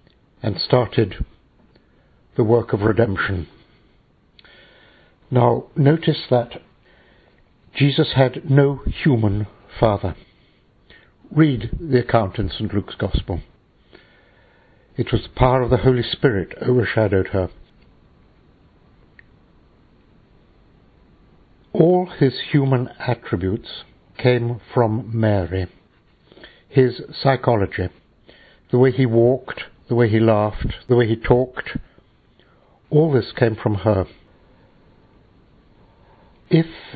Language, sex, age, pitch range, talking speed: English, male, 60-79, 105-135 Hz, 95 wpm